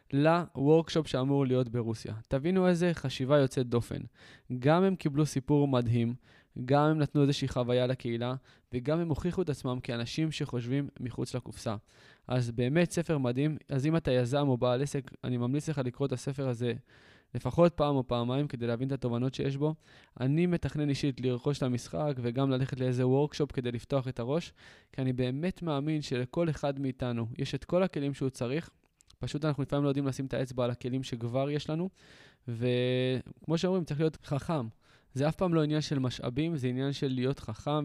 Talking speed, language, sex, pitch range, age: 175 wpm, Hebrew, male, 125-145 Hz, 20-39